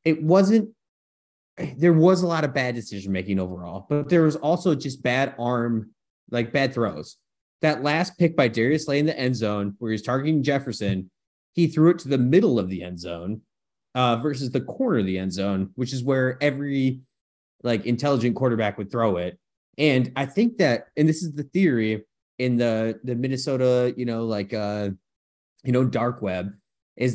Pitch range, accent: 110-155 Hz, American